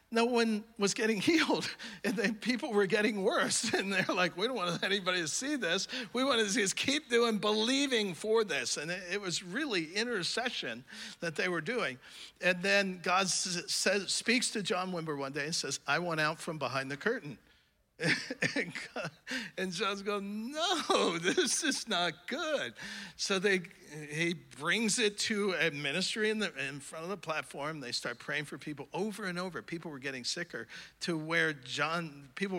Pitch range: 140-205 Hz